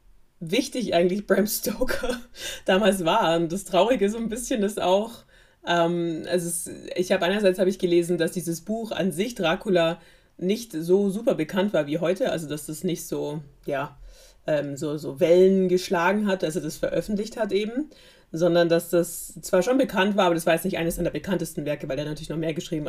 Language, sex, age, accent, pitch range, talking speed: German, female, 30-49, German, 165-190 Hz, 200 wpm